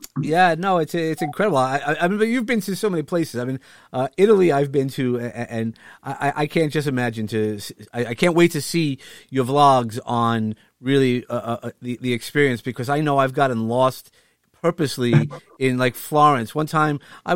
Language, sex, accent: English, male, American